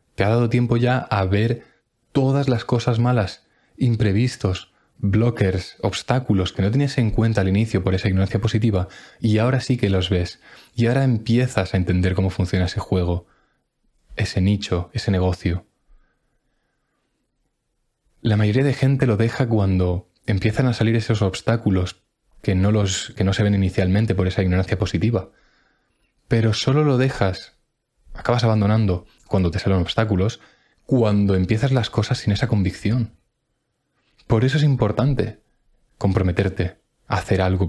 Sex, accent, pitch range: male, Spanish, 95-115 Hz